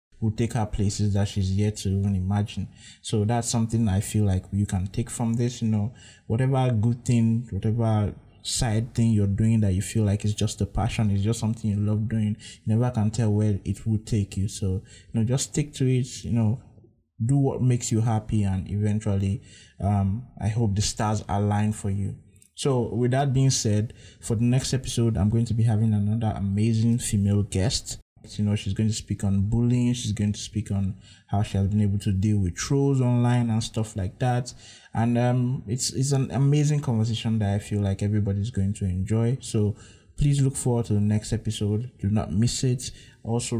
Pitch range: 105-120 Hz